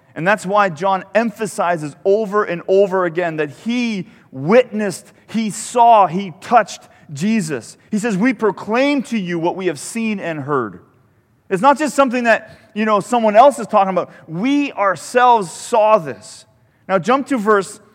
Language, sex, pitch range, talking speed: English, male, 175-230 Hz, 165 wpm